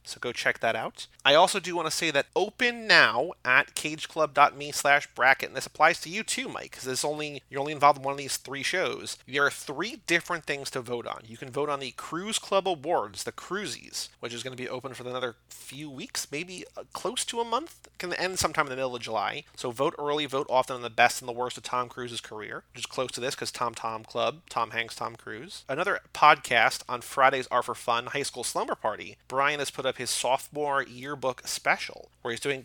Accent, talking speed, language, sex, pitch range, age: American, 235 wpm, English, male, 125-150 Hz, 30-49